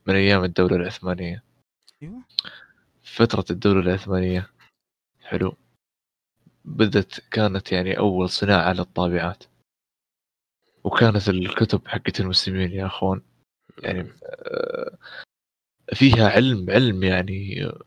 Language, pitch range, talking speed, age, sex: Arabic, 90-115 Hz, 85 wpm, 20-39, male